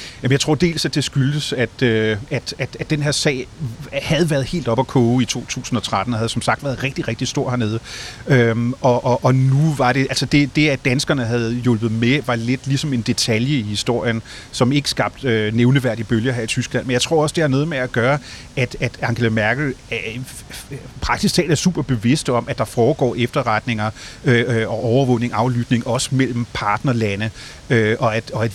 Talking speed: 200 wpm